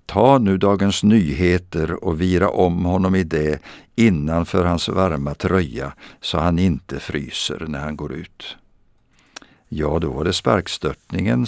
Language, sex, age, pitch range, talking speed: Swedish, male, 60-79, 75-105 Hz, 140 wpm